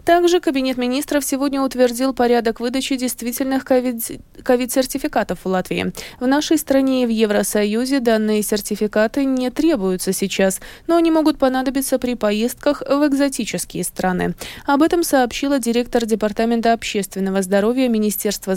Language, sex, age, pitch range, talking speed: Russian, female, 20-39, 210-275 Hz, 125 wpm